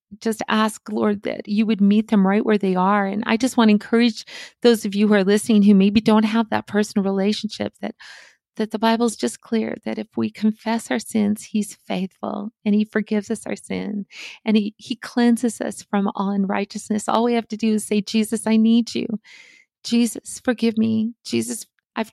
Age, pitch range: 40-59, 195-225 Hz